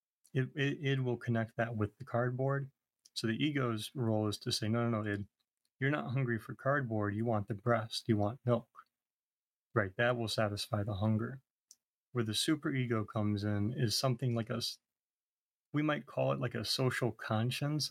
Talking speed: 185 wpm